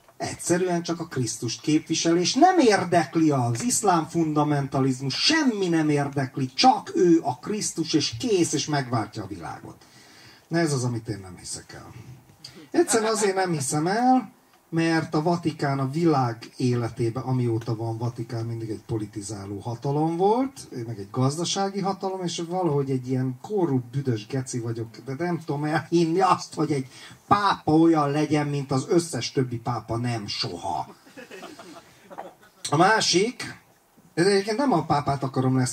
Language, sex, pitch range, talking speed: Hungarian, male, 120-160 Hz, 150 wpm